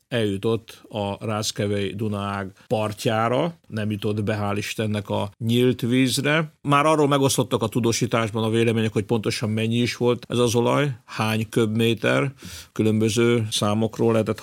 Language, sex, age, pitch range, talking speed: Hungarian, male, 50-69, 105-120 Hz, 130 wpm